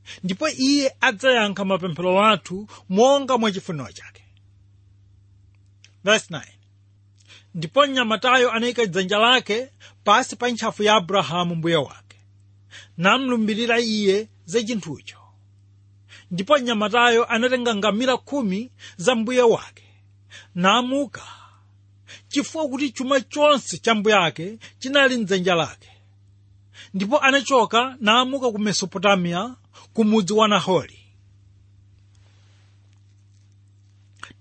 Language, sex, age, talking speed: English, male, 40-59, 85 wpm